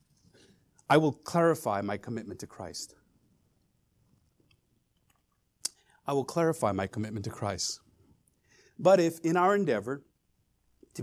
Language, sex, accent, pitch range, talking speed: English, male, American, 130-205 Hz, 110 wpm